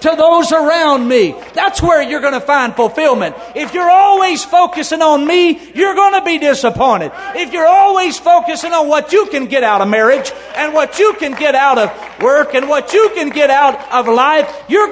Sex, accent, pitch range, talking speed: male, American, 295-360 Hz, 205 wpm